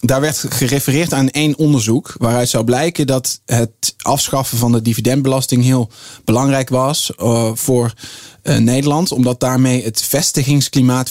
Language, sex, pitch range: Dutch, male, 115-135 Hz